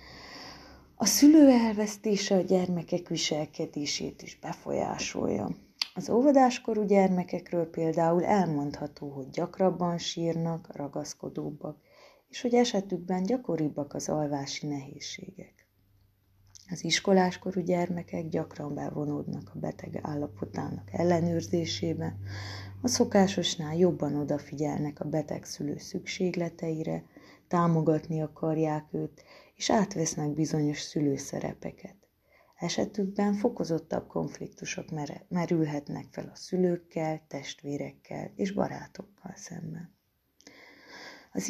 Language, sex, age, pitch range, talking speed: Hungarian, female, 20-39, 145-190 Hz, 85 wpm